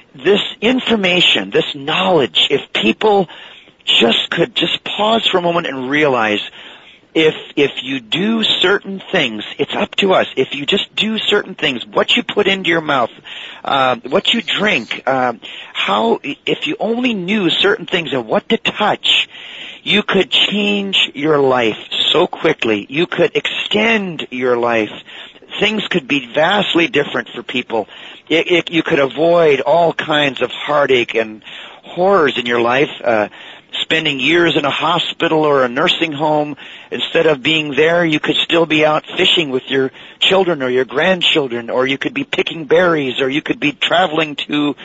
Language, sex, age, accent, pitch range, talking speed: English, male, 40-59, American, 140-200 Hz, 165 wpm